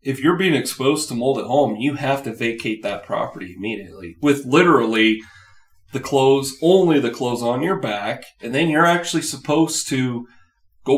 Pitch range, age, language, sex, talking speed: 115-145 Hz, 30-49, English, male, 175 wpm